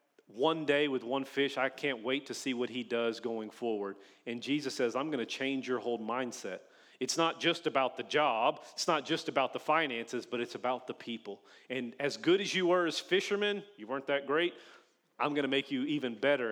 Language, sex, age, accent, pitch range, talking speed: English, male, 40-59, American, 120-145 Hz, 220 wpm